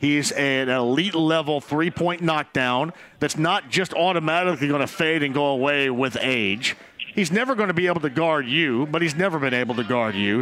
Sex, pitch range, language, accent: male, 150-190 Hz, English, American